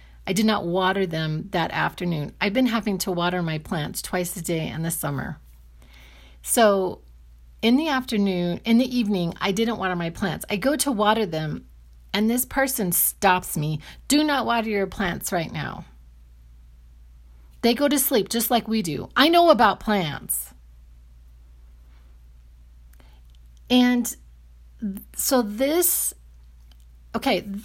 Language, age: English, 40-59